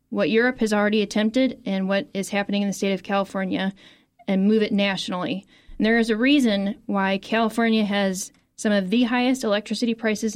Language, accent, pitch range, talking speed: English, American, 200-235 Hz, 185 wpm